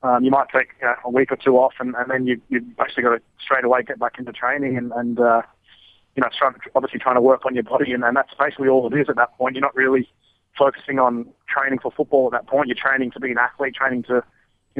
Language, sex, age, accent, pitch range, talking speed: English, male, 20-39, Australian, 125-140 Hz, 275 wpm